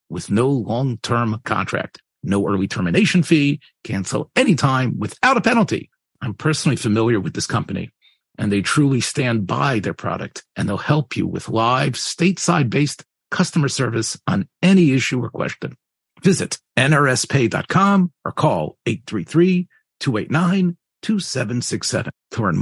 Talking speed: 125 wpm